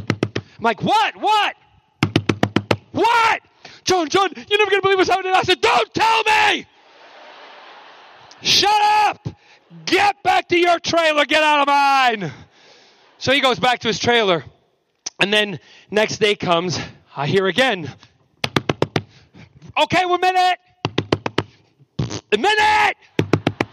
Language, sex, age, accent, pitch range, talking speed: English, male, 30-49, American, 250-420 Hz, 125 wpm